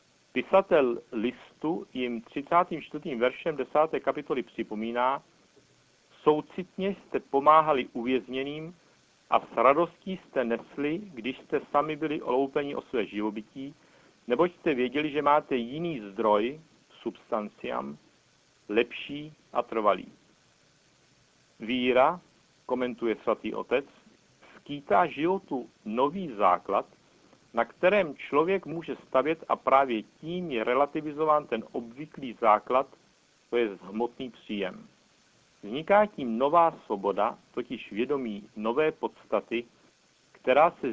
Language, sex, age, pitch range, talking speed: Czech, male, 60-79, 120-155 Hz, 105 wpm